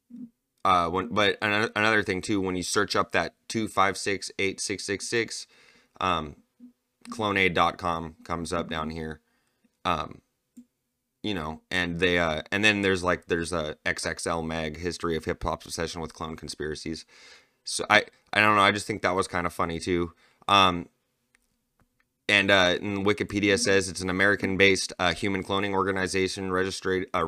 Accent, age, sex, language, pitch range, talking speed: American, 20-39, male, English, 90-110 Hz, 160 wpm